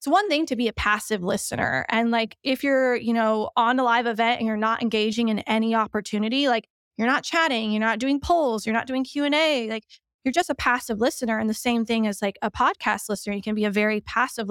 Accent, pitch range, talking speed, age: American, 220-250 Hz, 240 wpm, 20-39